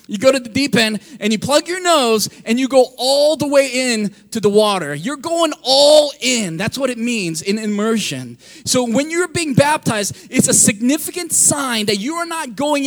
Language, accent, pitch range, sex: English, American, 215-270 Hz, male